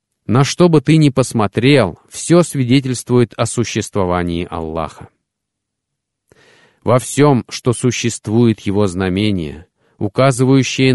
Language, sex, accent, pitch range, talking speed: Russian, male, native, 100-130 Hz, 100 wpm